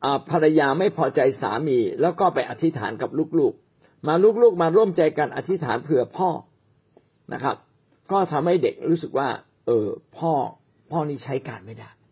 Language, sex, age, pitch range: Thai, male, 60-79, 120-165 Hz